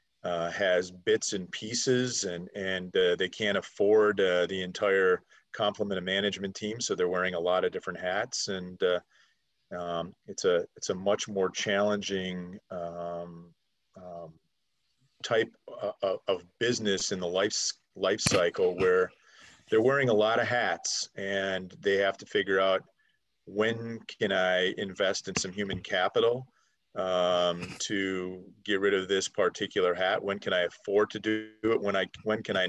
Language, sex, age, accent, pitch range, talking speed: English, male, 40-59, American, 90-120 Hz, 160 wpm